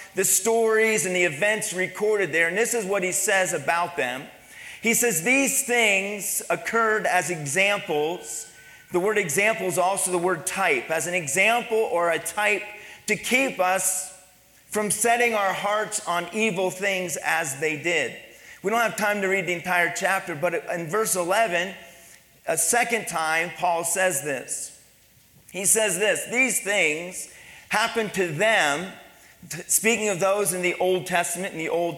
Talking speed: 160 wpm